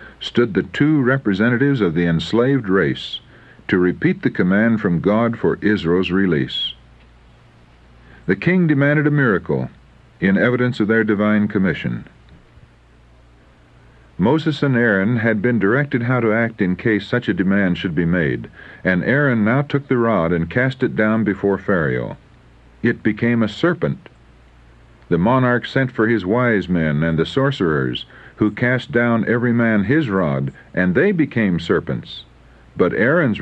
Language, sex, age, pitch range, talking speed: English, male, 60-79, 80-125 Hz, 150 wpm